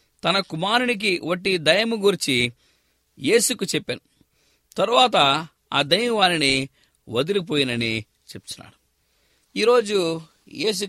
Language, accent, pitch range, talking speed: English, Indian, 125-215 Hz, 110 wpm